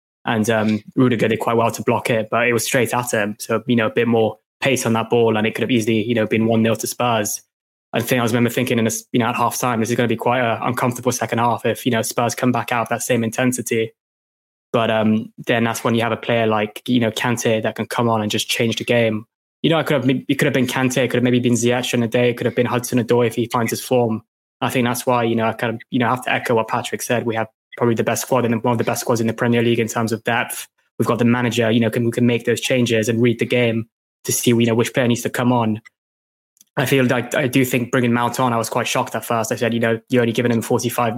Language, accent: English, British